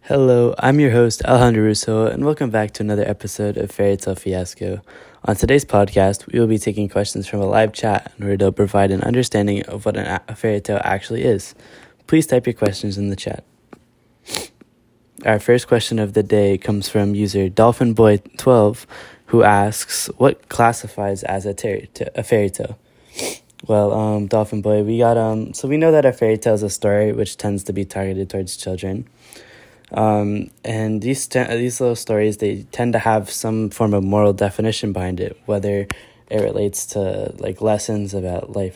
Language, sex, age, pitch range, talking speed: English, male, 10-29, 100-115 Hz, 190 wpm